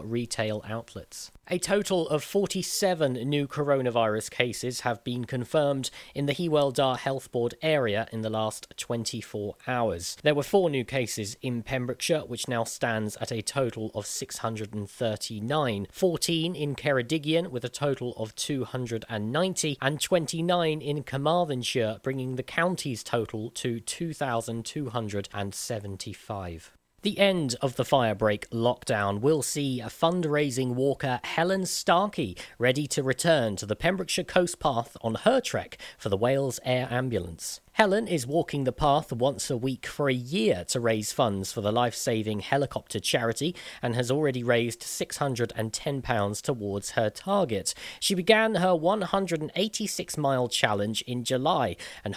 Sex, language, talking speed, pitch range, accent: male, English, 140 wpm, 115-155 Hz, British